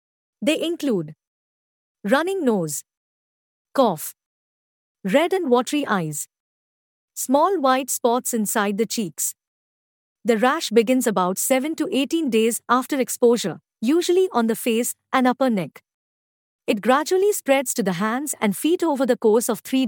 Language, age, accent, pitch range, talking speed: English, 50-69, Indian, 195-275 Hz, 135 wpm